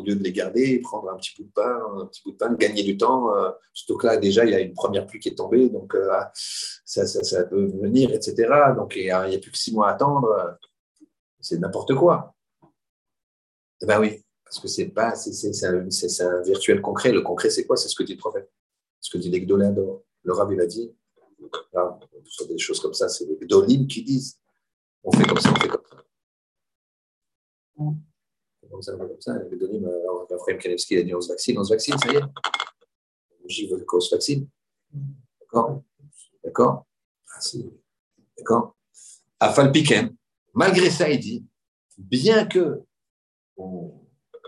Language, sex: French, male